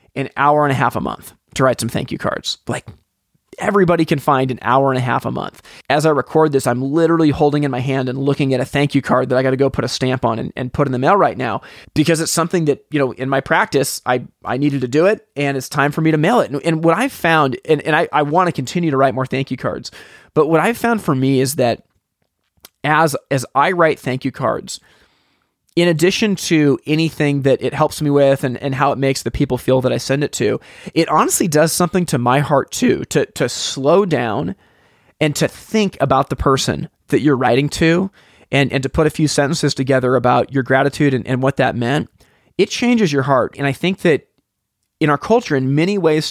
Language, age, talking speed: English, 30-49, 240 wpm